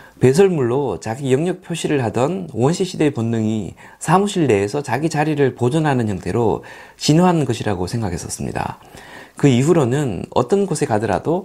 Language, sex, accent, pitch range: Korean, male, native, 120-170 Hz